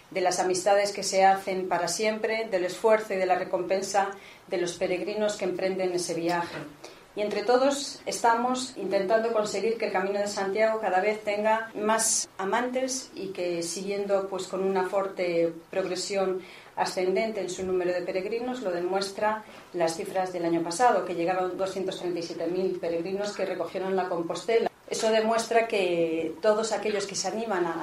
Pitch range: 175-195 Hz